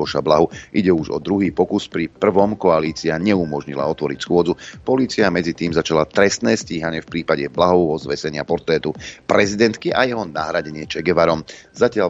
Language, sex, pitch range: Slovak, male, 80-105 Hz